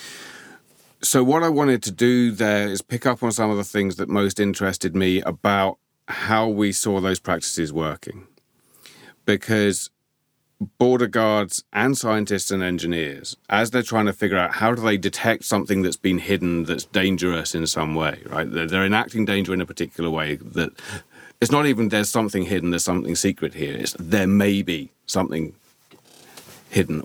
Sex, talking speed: male, 170 wpm